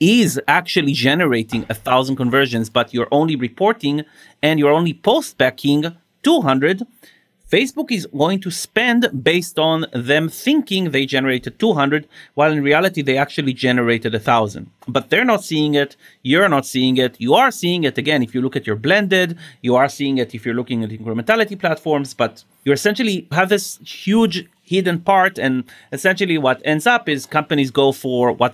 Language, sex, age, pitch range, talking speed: English, male, 30-49, 130-180 Hz, 175 wpm